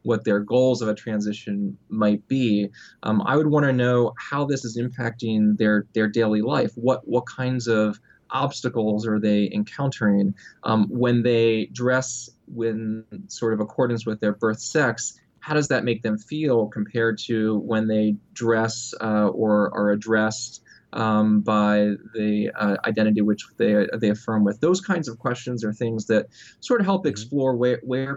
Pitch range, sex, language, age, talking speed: 105-125 Hz, male, English, 20-39, 170 wpm